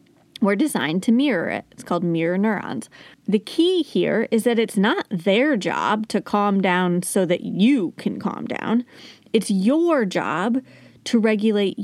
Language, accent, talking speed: English, American, 160 wpm